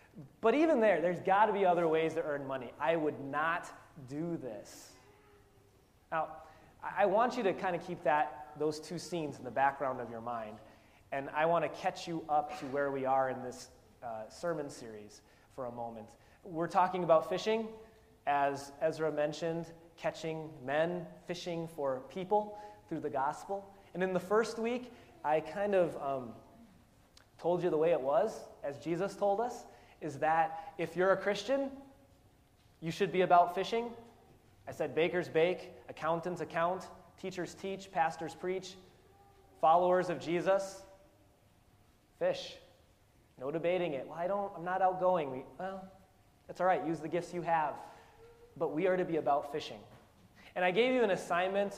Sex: male